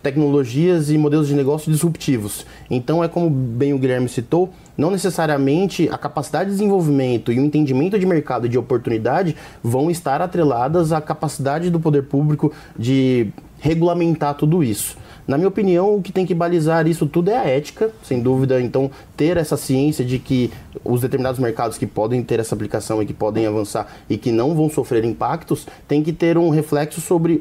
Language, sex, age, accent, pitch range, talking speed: Portuguese, male, 20-39, Brazilian, 130-165 Hz, 185 wpm